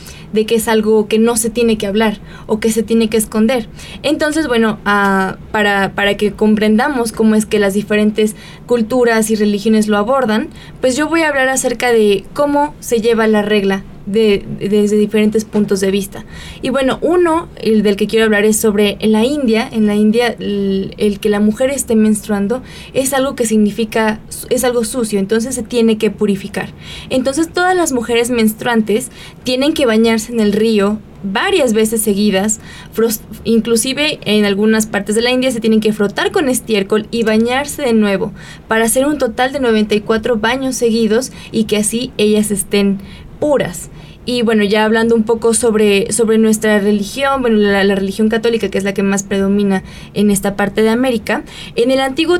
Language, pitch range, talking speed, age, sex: Spanish, 210-240 Hz, 185 wpm, 20-39, female